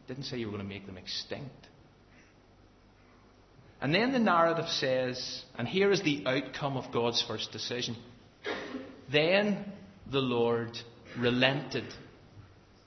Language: English